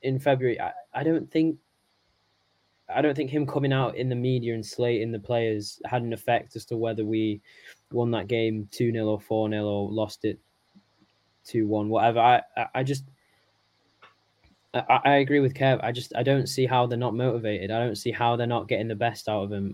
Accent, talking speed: British, 210 wpm